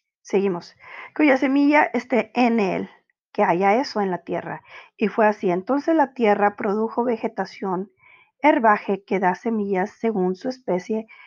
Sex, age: female, 40-59